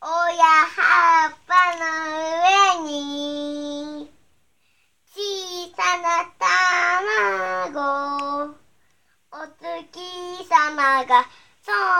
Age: 20-39